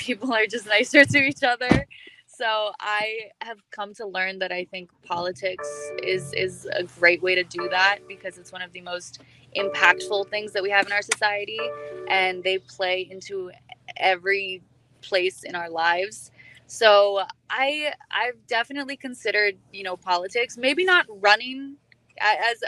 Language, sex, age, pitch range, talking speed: English, female, 20-39, 175-205 Hz, 160 wpm